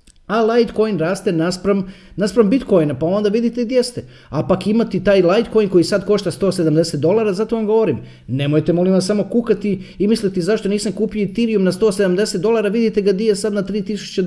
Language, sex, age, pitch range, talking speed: Croatian, male, 30-49, 165-205 Hz, 190 wpm